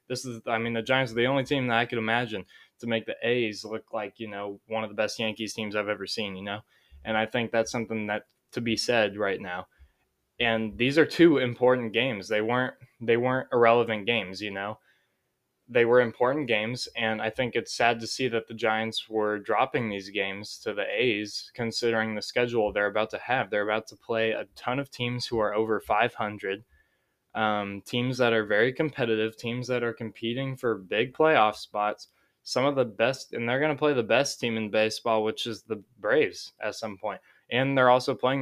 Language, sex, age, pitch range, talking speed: English, male, 10-29, 110-120 Hz, 215 wpm